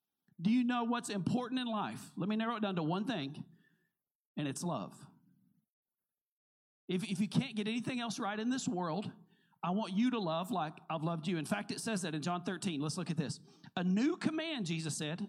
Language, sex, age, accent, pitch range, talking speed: English, male, 50-69, American, 165-215 Hz, 215 wpm